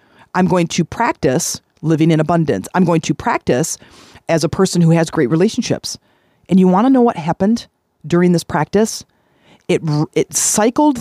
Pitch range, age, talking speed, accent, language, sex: 155-200 Hz, 40-59, 170 wpm, American, English, female